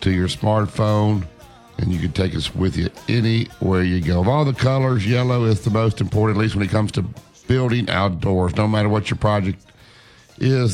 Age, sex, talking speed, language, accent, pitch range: 60-79, male, 200 wpm, English, American, 95-120 Hz